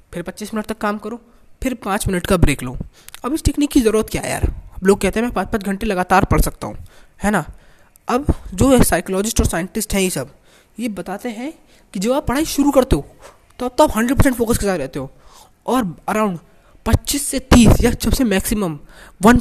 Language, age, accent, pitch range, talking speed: Hindi, 20-39, native, 160-225 Hz, 225 wpm